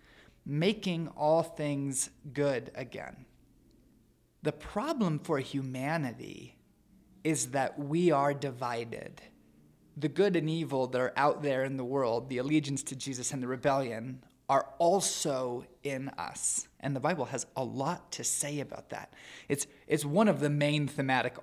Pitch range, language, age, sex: 130-170 Hz, English, 20-39, male